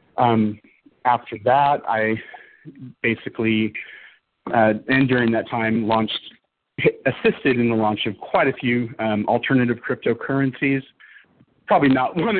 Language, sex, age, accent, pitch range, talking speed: English, male, 40-59, American, 110-135 Hz, 115 wpm